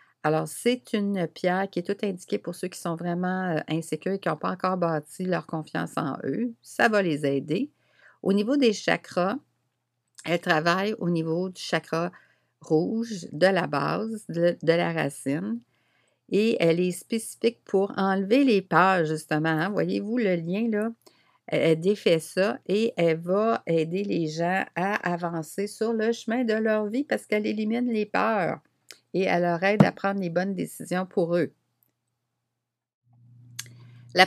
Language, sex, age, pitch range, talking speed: French, female, 60-79, 155-205 Hz, 160 wpm